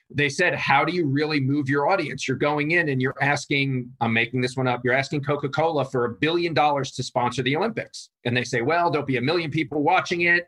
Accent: American